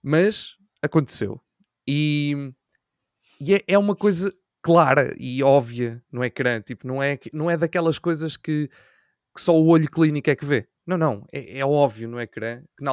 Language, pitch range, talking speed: Portuguese, 130-165 Hz, 180 wpm